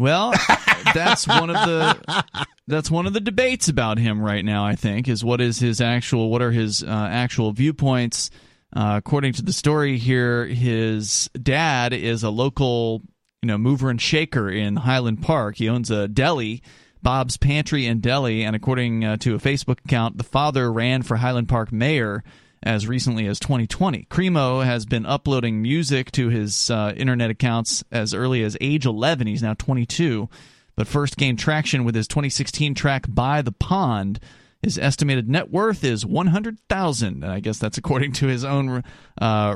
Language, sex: English, male